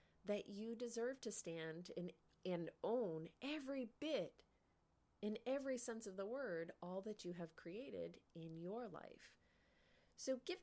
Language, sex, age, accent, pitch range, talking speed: English, female, 30-49, American, 155-220 Hz, 145 wpm